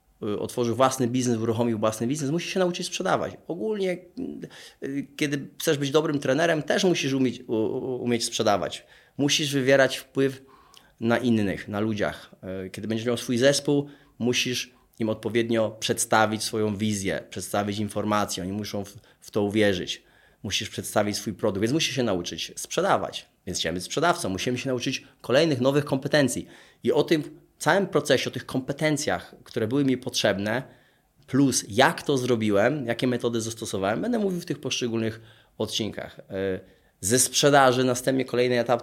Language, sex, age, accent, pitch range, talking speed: Polish, male, 30-49, native, 110-135 Hz, 150 wpm